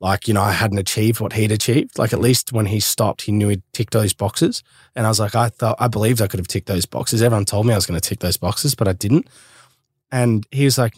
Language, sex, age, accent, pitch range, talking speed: English, male, 20-39, Australian, 105-120 Hz, 285 wpm